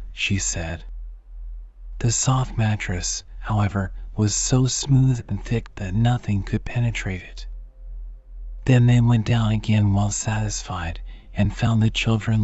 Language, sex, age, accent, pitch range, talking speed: English, male, 40-59, American, 95-115 Hz, 130 wpm